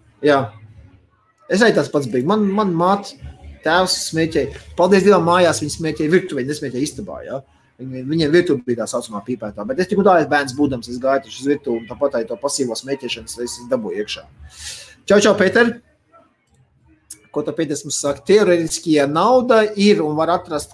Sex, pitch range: male, 125-175 Hz